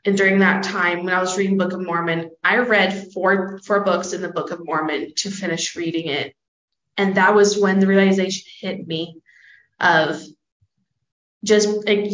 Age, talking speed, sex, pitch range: 20-39, 180 wpm, female, 180-210 Hz